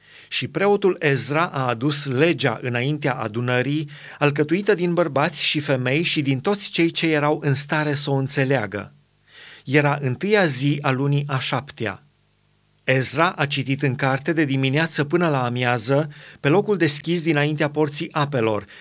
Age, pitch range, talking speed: 30-49, 135-160 Hz, 150 wpm